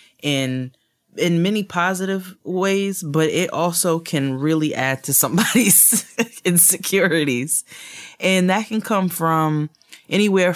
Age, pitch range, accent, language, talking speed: 20-39, 125-160 Hz, American, English, 115 wpm